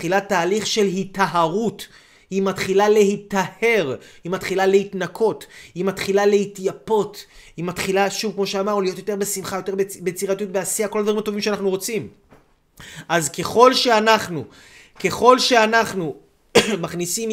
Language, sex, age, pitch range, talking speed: Hebrew, male, 30-49, 180-220 Hz, 120 wpm